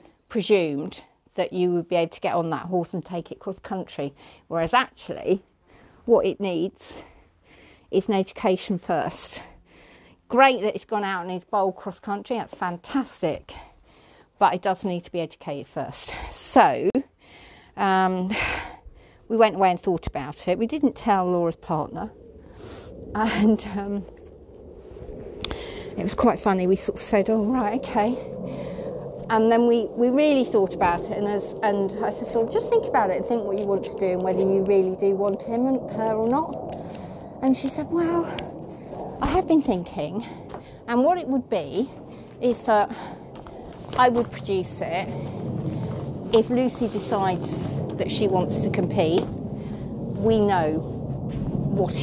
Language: English